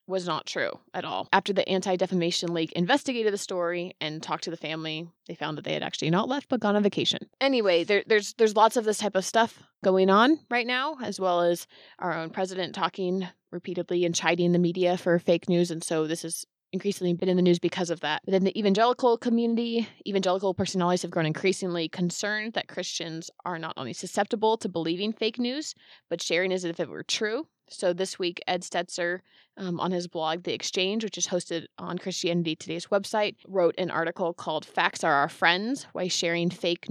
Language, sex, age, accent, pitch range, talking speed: English, female, 20-39, American, 170-200 Hz, 205 wpm